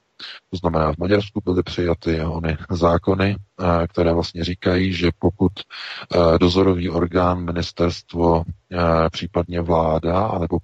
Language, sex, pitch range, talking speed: Czech, male, 80-95 Hz, 105 wpm